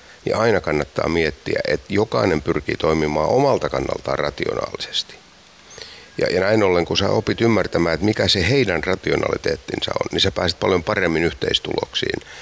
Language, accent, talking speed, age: Finnish, native, 150 wpm, 60-79